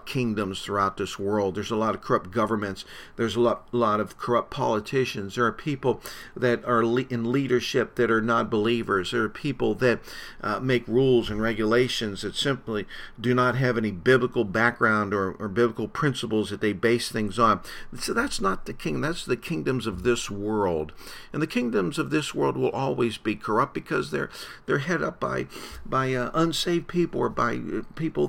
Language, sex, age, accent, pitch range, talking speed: English, male, 50-69, American, 105-125 Hz, 190 wpm